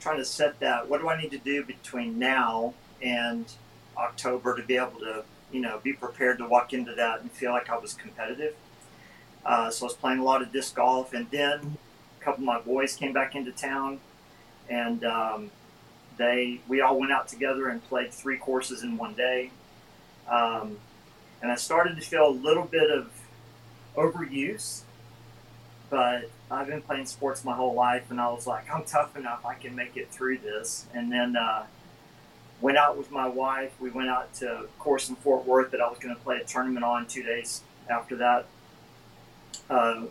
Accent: American